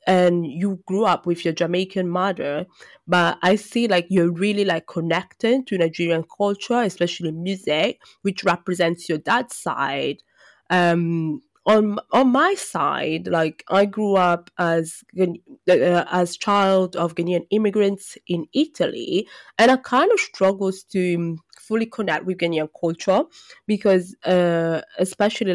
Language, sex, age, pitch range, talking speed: English, female, 20-39, 170-195 Hz, 135 wpm